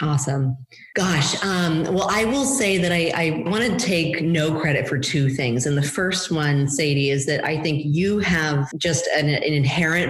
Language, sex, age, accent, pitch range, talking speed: English, female, 30-49, American, 135-160 Hz, 195 wpm